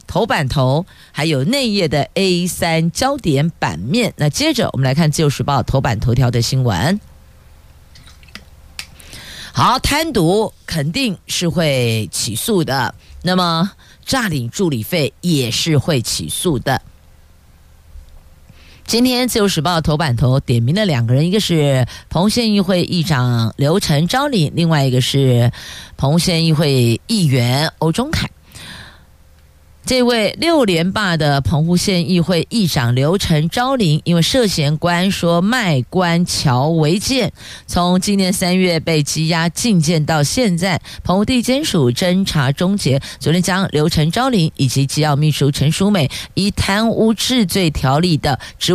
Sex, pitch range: female, 135-185 Hz